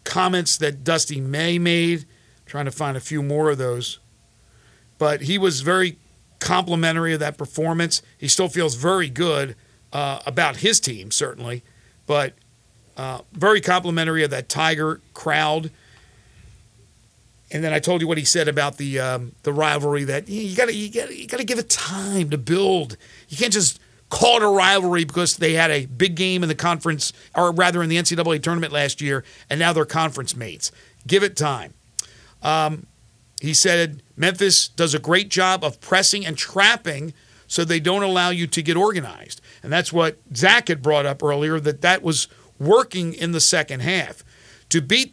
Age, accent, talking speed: 50-69, American, 175 wpm